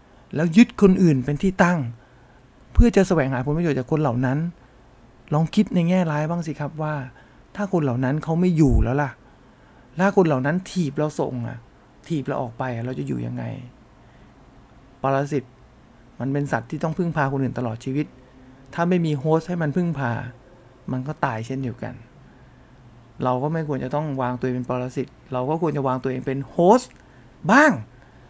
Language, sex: English, male